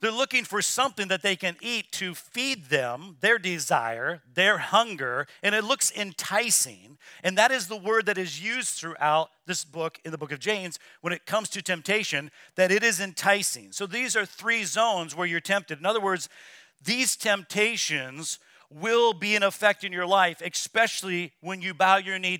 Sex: male